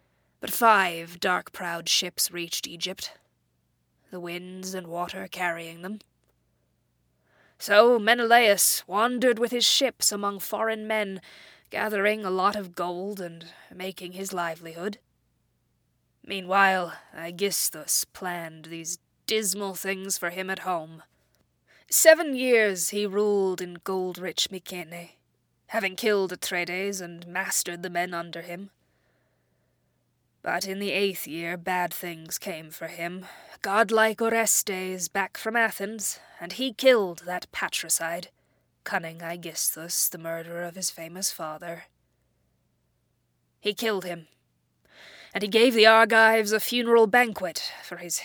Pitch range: 170-205 Hz